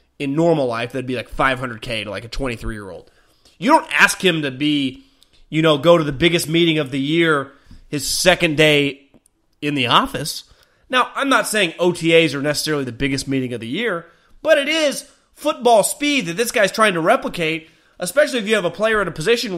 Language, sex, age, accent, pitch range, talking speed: English, male, 30-49, American, 155-220 Hz, 200 wpm